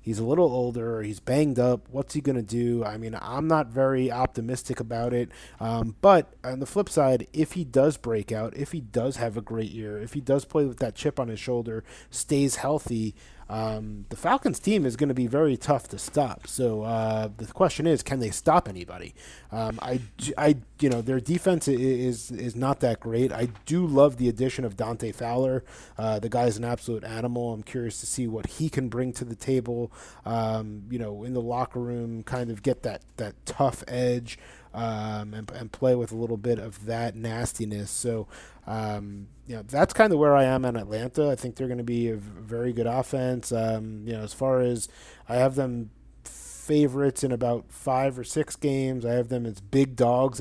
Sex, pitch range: male, 115-130 Hz